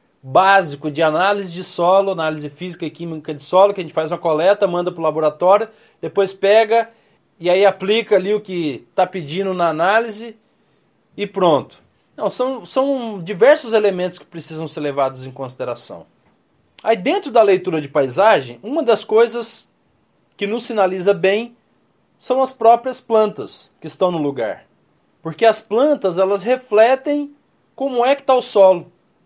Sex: male